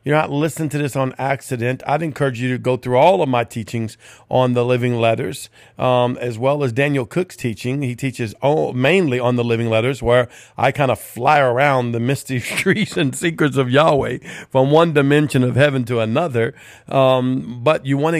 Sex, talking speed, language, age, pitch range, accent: male, 200 wpm, English, 50-69, 125-155 Hz, American